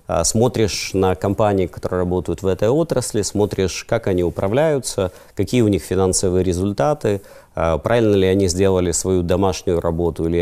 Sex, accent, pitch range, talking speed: male, native, 85-110 Hz, 145 wpm